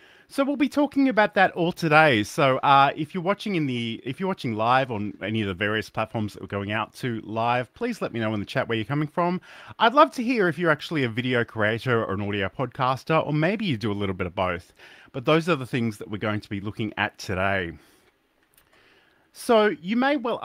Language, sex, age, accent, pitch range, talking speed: English, male, 30-49, Australian, 100-160 Hz, 230 wpm